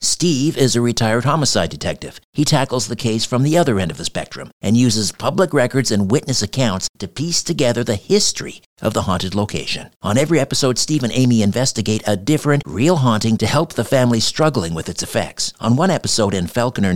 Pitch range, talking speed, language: 105-135 Hz, 200 wpm, English